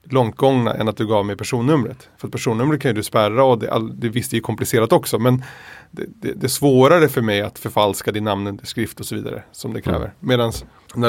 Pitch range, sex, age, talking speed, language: 105-130 Hz, male, 30-49, 220 wpm, Swedish